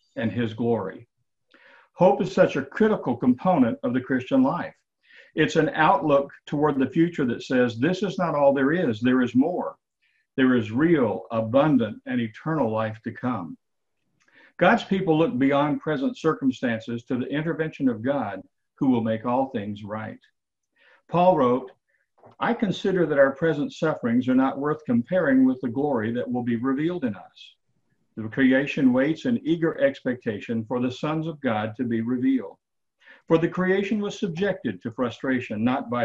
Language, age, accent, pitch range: English, 50-69, American, 125-195 Hz